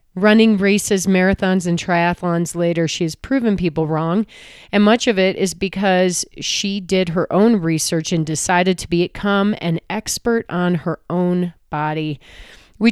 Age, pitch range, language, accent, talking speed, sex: 30-49, 165-195 Hz, English, American, 155 wpm, female